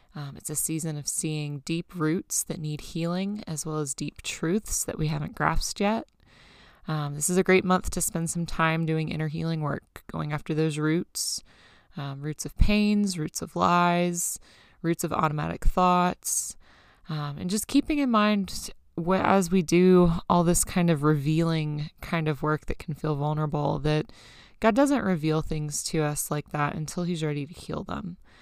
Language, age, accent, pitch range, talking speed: English, 20-39, American, 150-185 Hz, 180 wpm